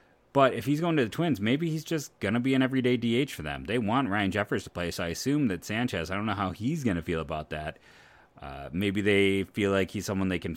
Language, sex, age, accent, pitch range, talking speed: English, male, 30-49, American, 90-115 Hz, 275 wpm